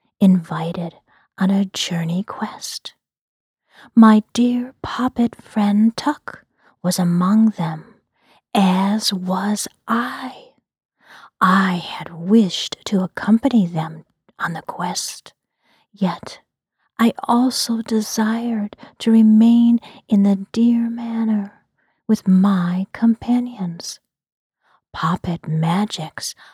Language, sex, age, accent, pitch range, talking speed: English, female, 40-59, American, 185-235 Hz, 90 wpm